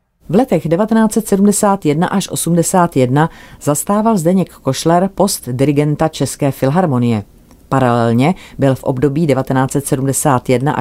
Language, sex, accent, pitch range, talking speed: Czech, female, native, 125-155 Hz, 95 wpm